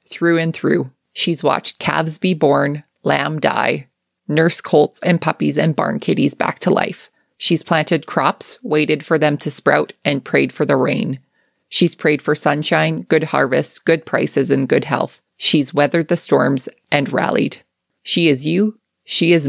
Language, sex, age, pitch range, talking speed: English, female, 20-39, 145-175 Hz, 170 wpm